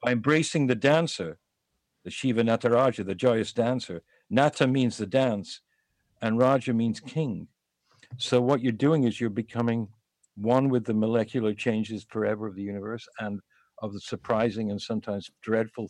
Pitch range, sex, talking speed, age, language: 105-125 Hz, male, 155 wpm, 60-79, English